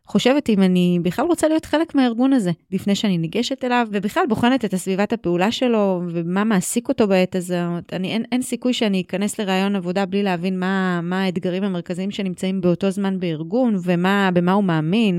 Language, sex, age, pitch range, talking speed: Hebrew, female, 30-49, 180-220 Hz, 170 wpm